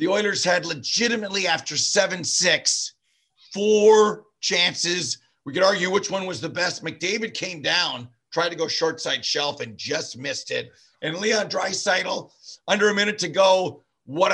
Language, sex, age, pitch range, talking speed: English, male, 50-69, 160-215 Hz, 160 wpm